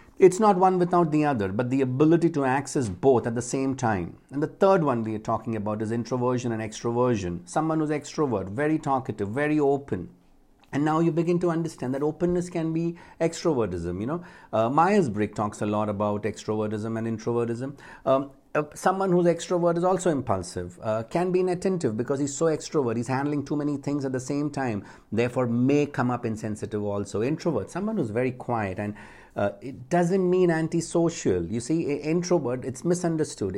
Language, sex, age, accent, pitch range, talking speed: English, male, 60-79, Indian, 110-155 Hz, 185 wpm